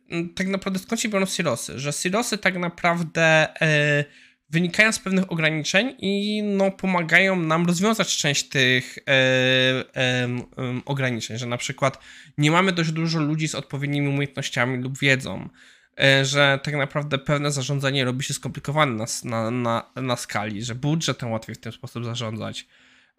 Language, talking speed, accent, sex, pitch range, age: Polish, 155 wpm, native, male, 125-170 Hz, 20-39